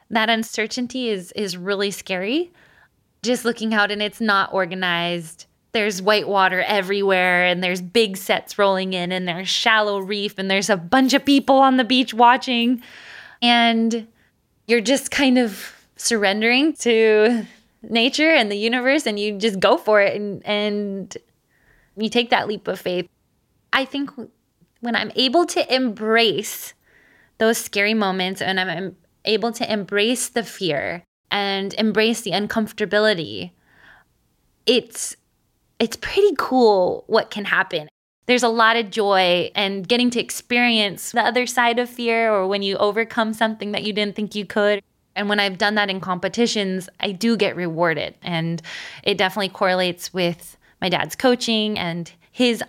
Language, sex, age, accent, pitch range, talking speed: English, female, 20-39, American, 190-235 Hz, 155 wpm